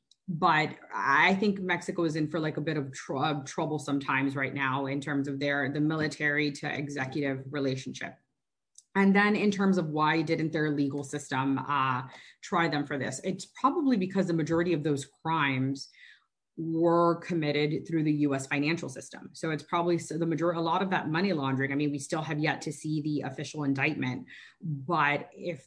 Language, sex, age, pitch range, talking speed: English, female, 30-49, 145-170 Hz, 185 wpm